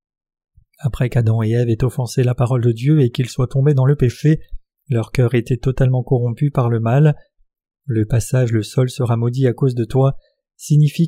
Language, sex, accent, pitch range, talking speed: French, male, French, 120-140 Hz, 195 wpm